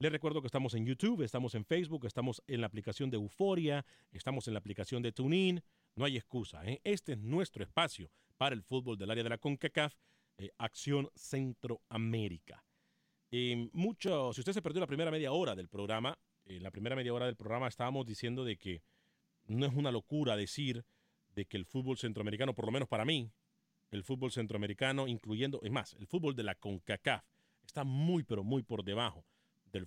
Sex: male